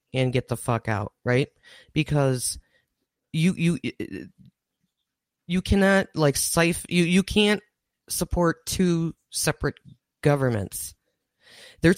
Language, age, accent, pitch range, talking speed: English, 30-49, American, 130-170 Hz, 105 wpm